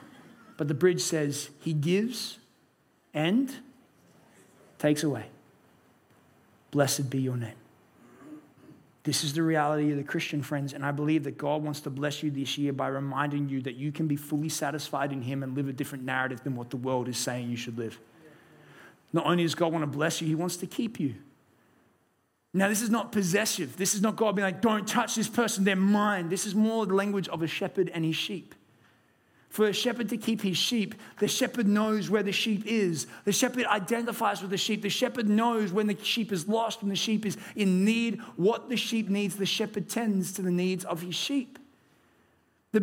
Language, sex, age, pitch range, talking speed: English, male, 30-49, 150-215 Hz, 205 wpm